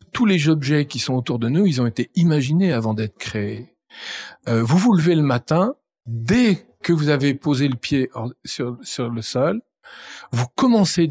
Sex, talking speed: male, 190 wpm